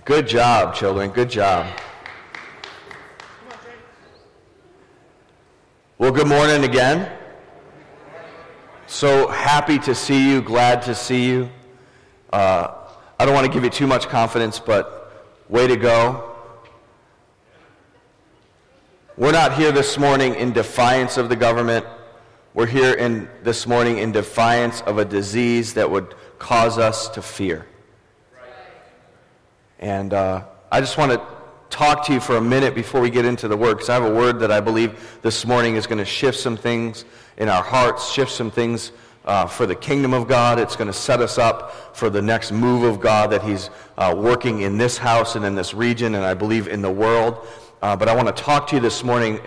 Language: English